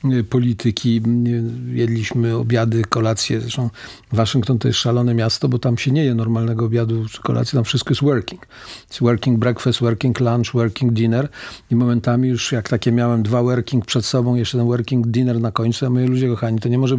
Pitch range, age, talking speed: 115-125 Hz, 50-69, 185 wpm